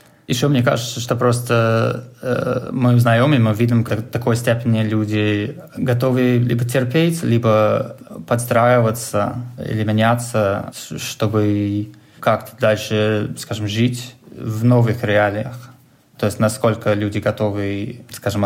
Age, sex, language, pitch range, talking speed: 20-39, male, Russian, 105-120 Hz, 120 wpm